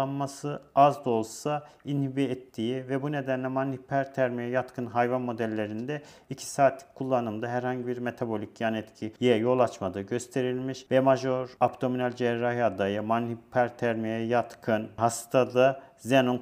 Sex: male